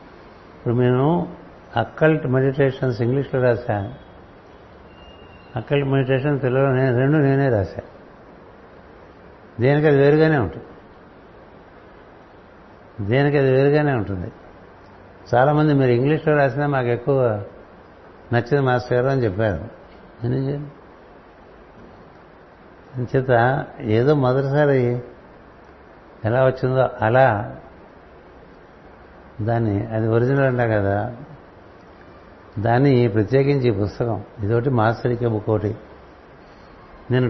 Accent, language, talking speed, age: native, Telugu, 80 wpm, 60-79